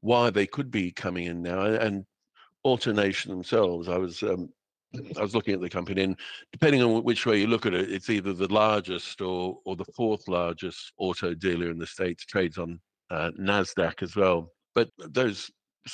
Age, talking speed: 50-69, 190 wpm